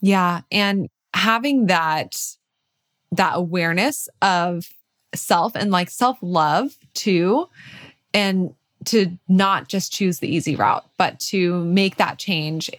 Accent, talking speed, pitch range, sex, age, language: American, 120 wpm, 180-230 Hz, female, 20-39, English